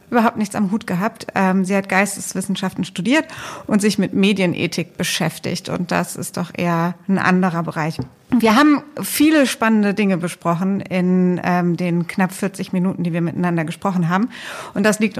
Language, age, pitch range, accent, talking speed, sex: German, 50-69, 190-230 Hz, German, 160 wpm, female